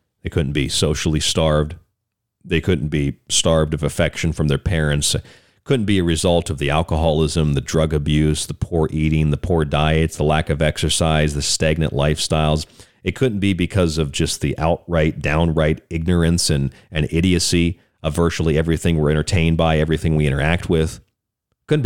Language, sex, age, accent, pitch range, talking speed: English, male, 40-59, American, 80-105 Hz, 165 wpm